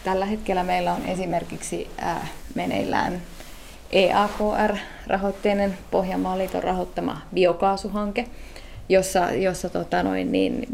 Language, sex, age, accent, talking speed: Finnish, female, 20-39, native, 95 wpm